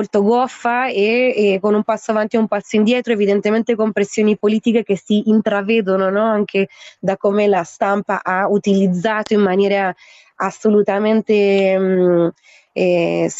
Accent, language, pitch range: native, Italian, 185-215 Hz